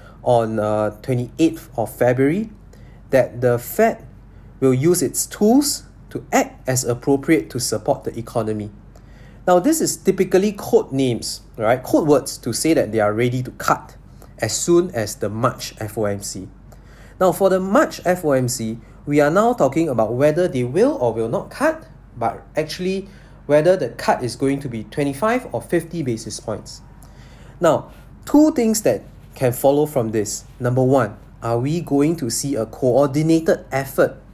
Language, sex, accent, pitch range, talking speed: English, male, Malaysian, 115-165 Hz, 160 wpm